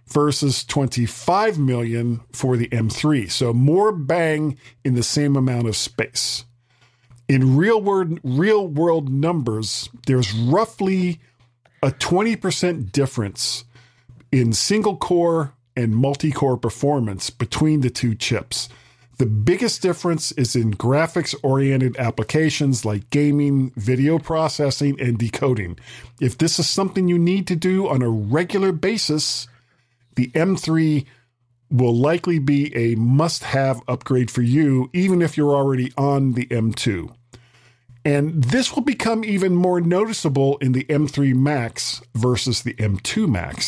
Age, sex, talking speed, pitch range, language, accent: 50-69, male, 120 wpm, 120-165 Hz, English, American